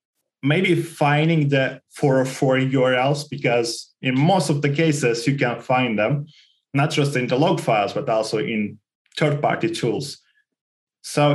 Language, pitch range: English, 125-155 Hz